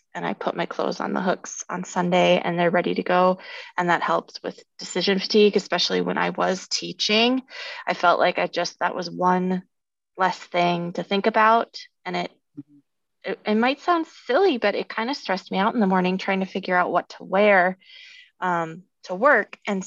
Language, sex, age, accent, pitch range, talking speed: English, female, 20-39, American, 180-235 Hz, 200 wpm